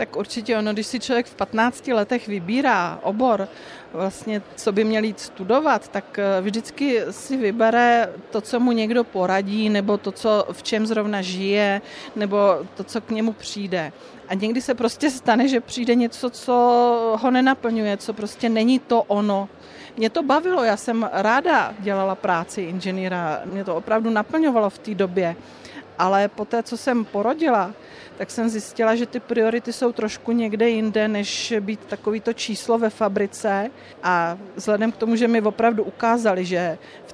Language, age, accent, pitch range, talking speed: Czech, 40-59, native, 195-230 Hz, 165 wpm